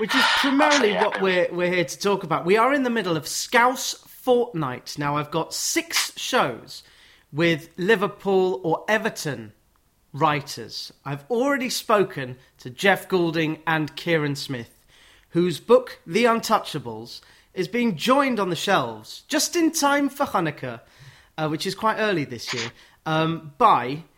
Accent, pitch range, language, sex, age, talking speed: British, 155-225 Hz, English, male, 30-49, 150 wpm